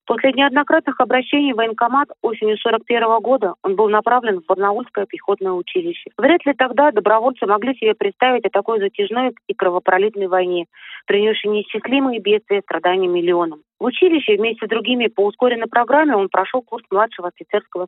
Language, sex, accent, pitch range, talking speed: Russian, female, native, 195-250 Hz, 160 wpm